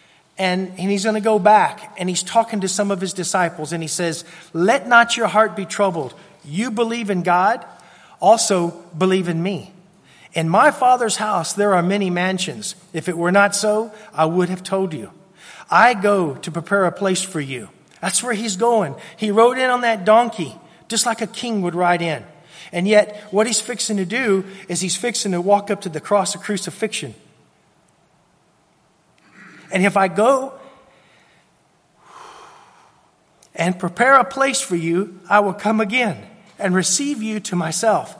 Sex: male